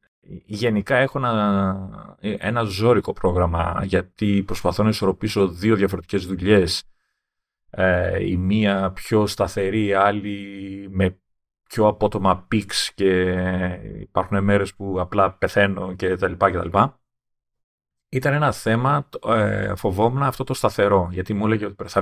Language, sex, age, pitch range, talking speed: Greek, male, 30-49, 95-115 Hz, 130 wpm